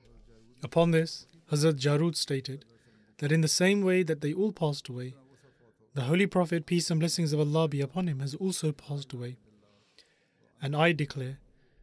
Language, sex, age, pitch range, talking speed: English, male, 30-49, 130-165 Hz, 165 wpm